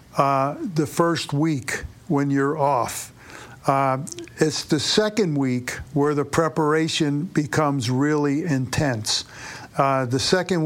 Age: 50-69